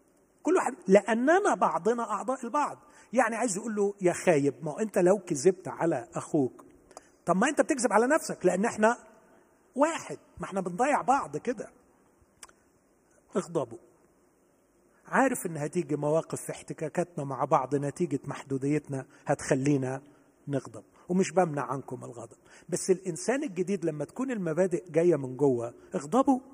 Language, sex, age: Arabic, male, 40-59